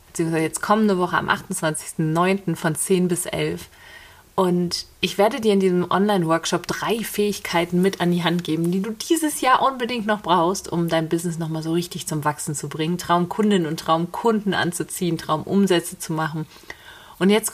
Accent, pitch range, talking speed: German, 160-190 Hz, 170 wpm